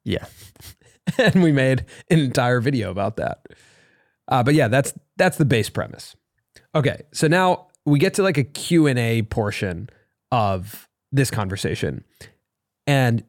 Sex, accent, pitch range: male, American, 115-150 Hz